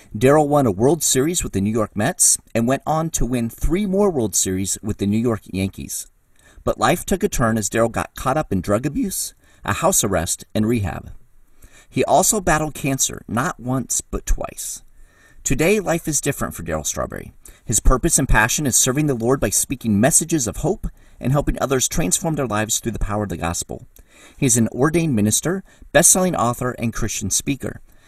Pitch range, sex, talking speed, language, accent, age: 105-150 Hz, male, 195 wpm, English, American, 40-59